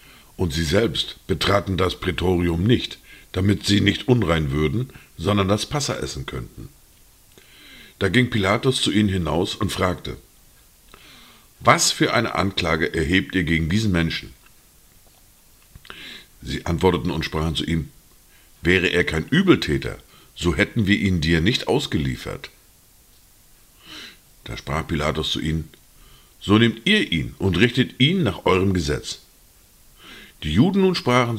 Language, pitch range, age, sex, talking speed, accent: German, 75-105 Hz, 50-69, male, 135 wpm, German